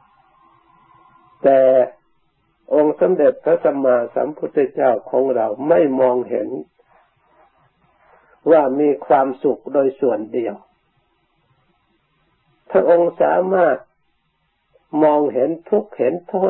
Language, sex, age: Thai, male, 60-79